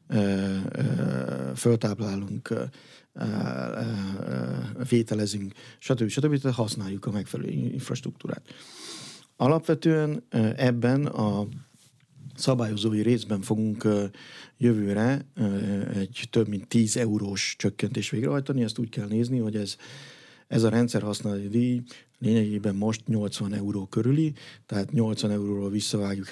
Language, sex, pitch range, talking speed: Hungarian, male, 105-125 Hz, 95 wpm